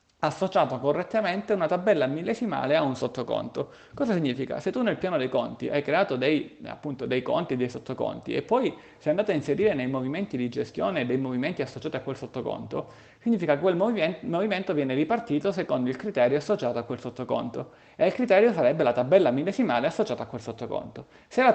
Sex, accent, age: male, native, 30-49